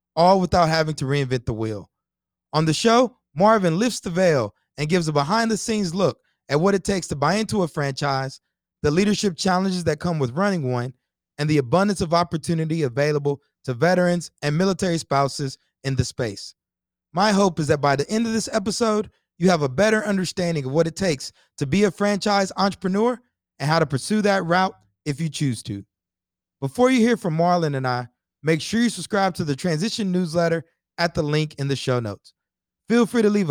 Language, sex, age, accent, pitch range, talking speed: English, male, 20-39, American, 145-205 Hz, 200 wpm